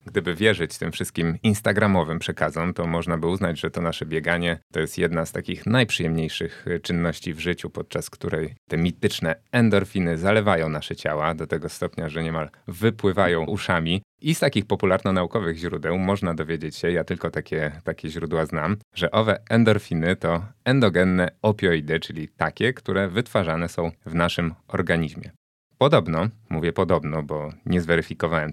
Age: 30-49